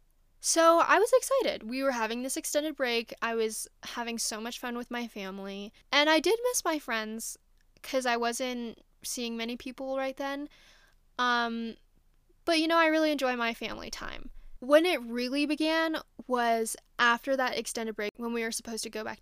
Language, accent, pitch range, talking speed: English, American, 225-270 Hz, 185 wpm